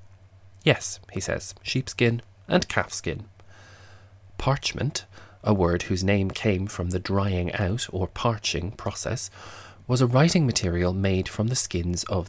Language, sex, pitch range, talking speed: English, male, 90-105 Hz, 135 wpm